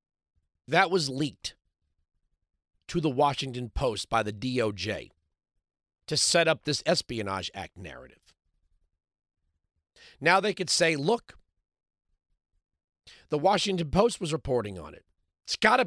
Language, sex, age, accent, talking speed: English, male, 40-59, American, 120 wpm